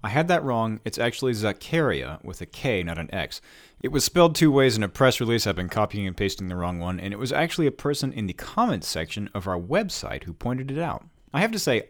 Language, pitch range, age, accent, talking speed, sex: English, 100-150 Hz, 30-49, American, 255 wpm, male